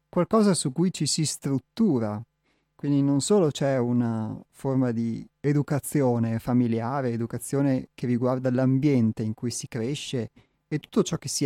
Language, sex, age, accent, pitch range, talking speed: Italian, male, 30-49, native, 120-155 Hz, 145 wpm